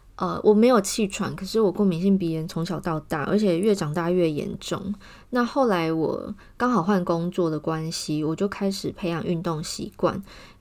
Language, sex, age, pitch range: Chinese, female, 20-39, 170-205 Hz